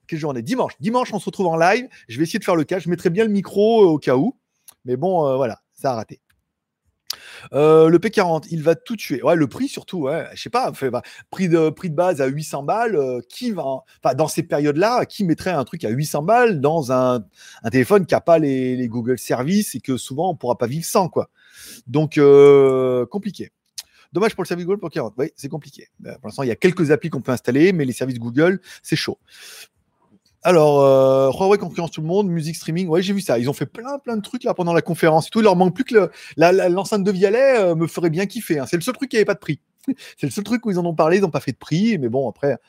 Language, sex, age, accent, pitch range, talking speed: French, male, 30-49, French, 140-195 Hz, 270 wpm